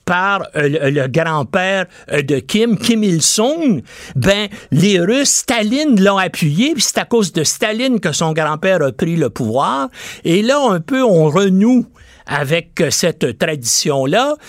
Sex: male